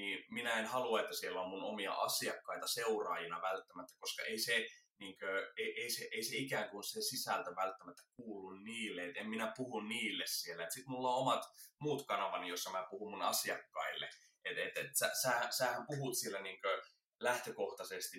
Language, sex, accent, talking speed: Finnish, male, native, 185 wpm